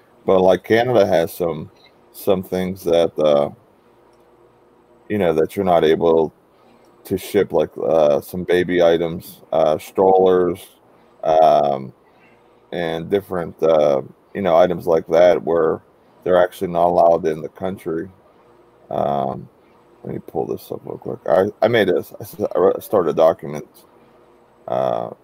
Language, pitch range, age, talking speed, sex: English, 90-115 Hz, 30-49, 135 wpm, male